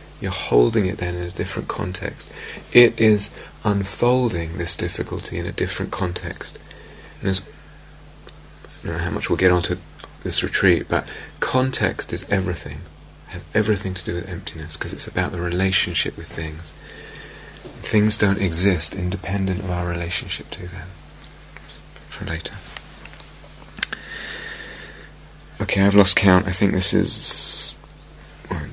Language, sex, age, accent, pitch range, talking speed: English, male, 30-49, British, 90-105 Hz, 140 wpm